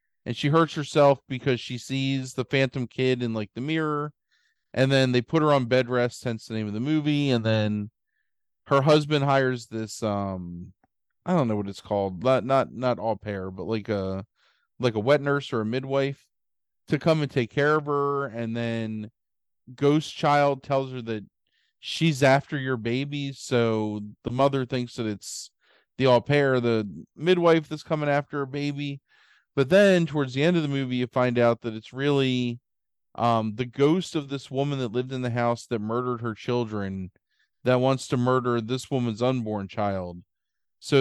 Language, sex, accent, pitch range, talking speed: English, male, American, 115-140 Hz, 185 wpm